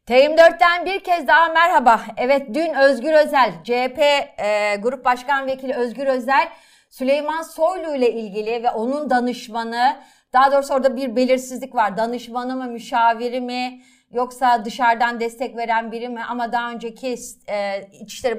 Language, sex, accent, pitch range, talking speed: Turkish, female, native, 225-280 Hz, 145 wpm